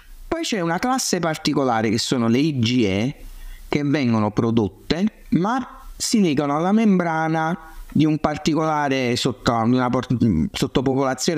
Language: Italian